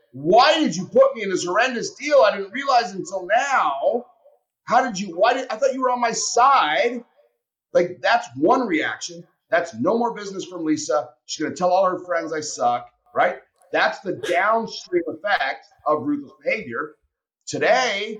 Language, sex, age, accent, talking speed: English, male, 30-49, American, 175 wpm